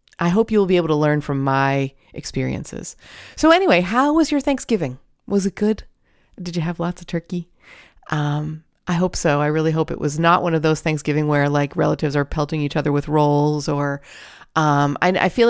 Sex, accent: female, American